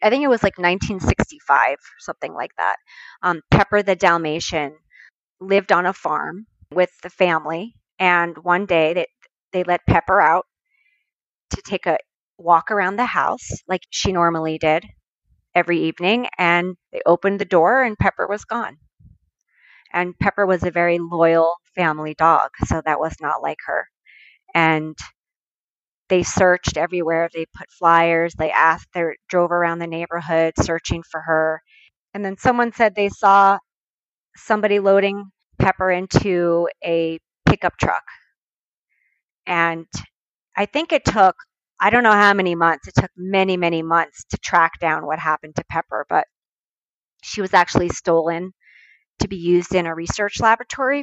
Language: English